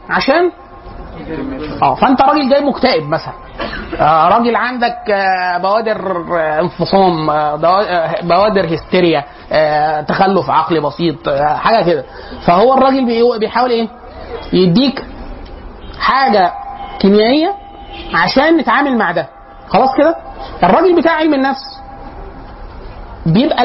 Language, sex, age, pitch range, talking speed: Arabic, male, 30-49, 185-265 Hz, 105 wpm